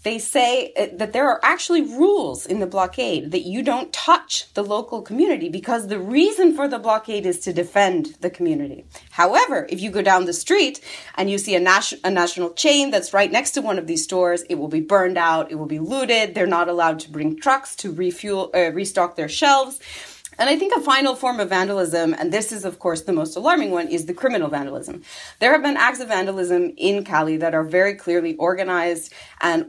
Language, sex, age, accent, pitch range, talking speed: English, female, 30-49, American, 170-250 Hz, 215 wpm